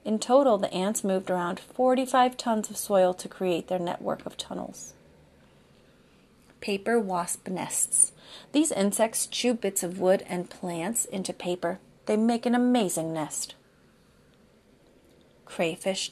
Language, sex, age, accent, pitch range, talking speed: English, female, 30-49, American, 175-225 Hz, 130 wpm